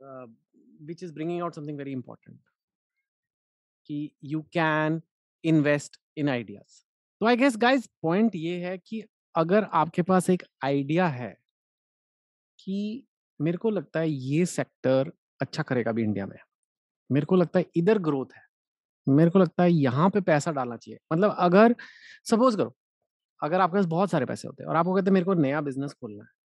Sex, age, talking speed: male, 30-49, 150 wpm